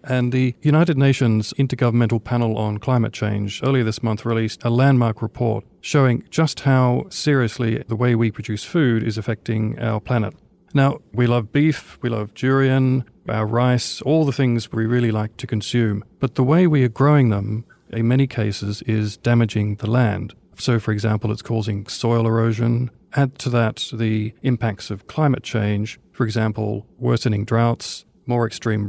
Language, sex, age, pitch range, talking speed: English, male, 40-59, 110-135 Hz, 170 wpm